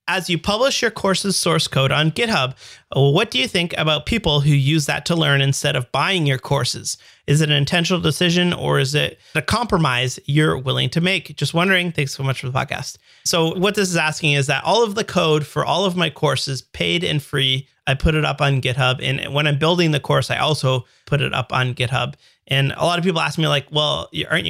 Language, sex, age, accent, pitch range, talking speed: English, male, 30-49, American, 140-165 Hz, 235 wpm